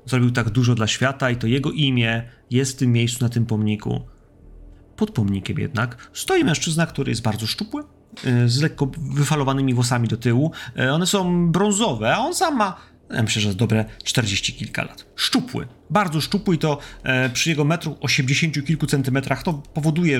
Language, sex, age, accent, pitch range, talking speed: Polish, male, 30-49, native, 110-145 Hz, 175 wpm